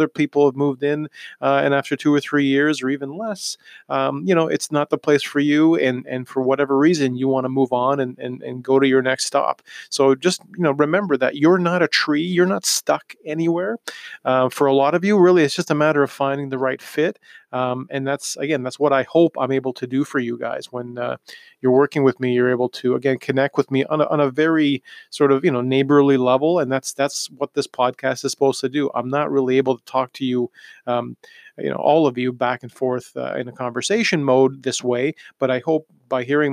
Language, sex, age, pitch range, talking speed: English, male, 30-49, 130-150 Hz, 245 wpm